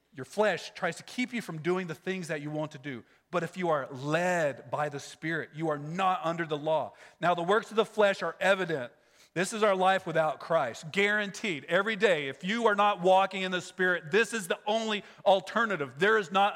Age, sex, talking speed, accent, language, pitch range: 40-59, male, 225 wpm, American, English, 170-220 Hz